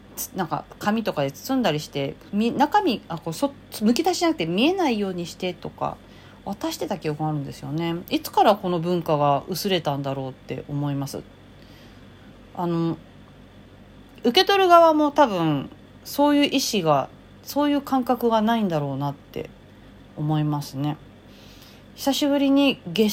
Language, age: Japanese, 40-59